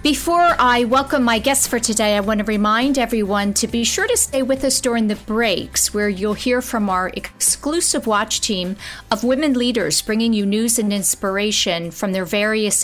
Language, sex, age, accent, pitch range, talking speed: English, female, 50-69, American, 200-255 Hz, 190 wpm